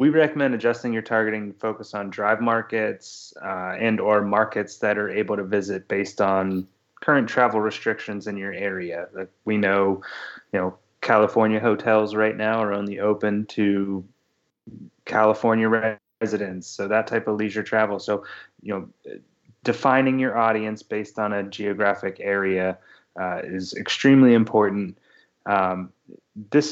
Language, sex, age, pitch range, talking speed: English, male, 20-39, 100-115 Hz, 145 wpm